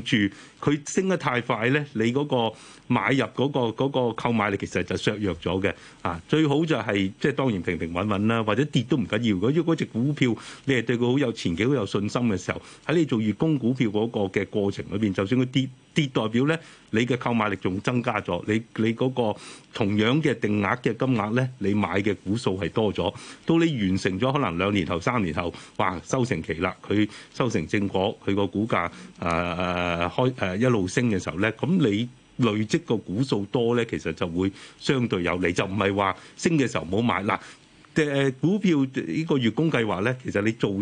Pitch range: 95-130 Hz